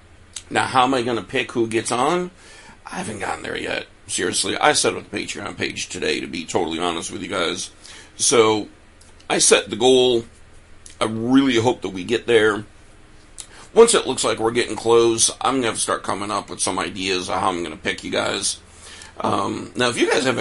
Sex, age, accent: male, 50-69, American